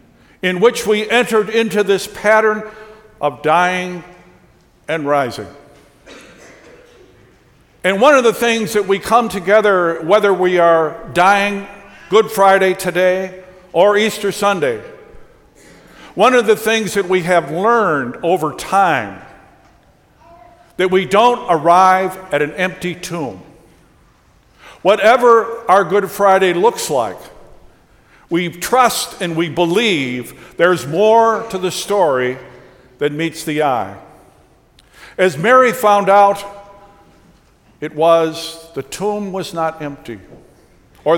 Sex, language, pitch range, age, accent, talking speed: male, English, 165-215 Hz, 60-79, American, 115 wpm